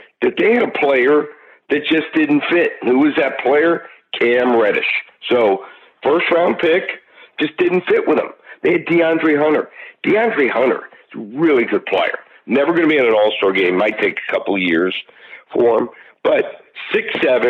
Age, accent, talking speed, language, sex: 60-79, American, 180 wpm, English, male